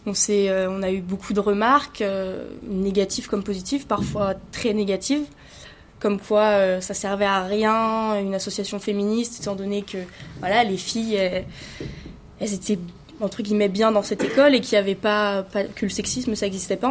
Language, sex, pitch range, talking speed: French, female, 195-225 Hz, 190 wpm